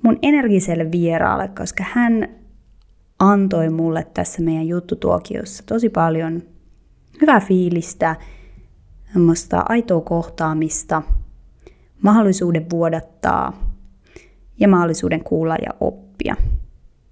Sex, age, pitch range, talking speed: female, 20-39, 160-205 Hz, 80 wpm